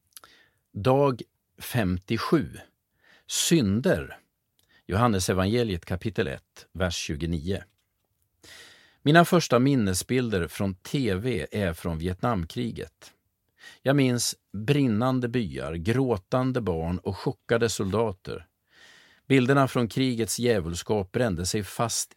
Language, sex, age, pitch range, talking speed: Swedish, male, 50-69, 95-125 Hz, 90 wpm